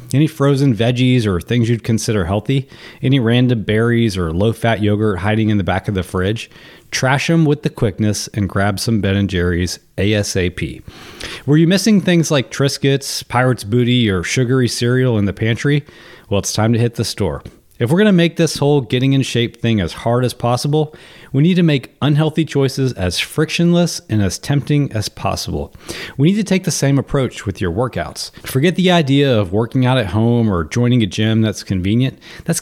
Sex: male